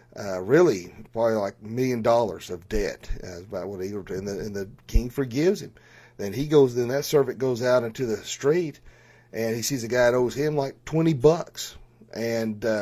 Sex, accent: male, American